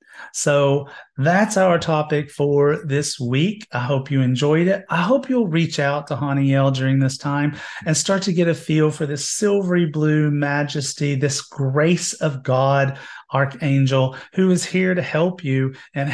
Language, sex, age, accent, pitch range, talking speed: English, male, 40-59, American, 135-170 Hz, 165 wpm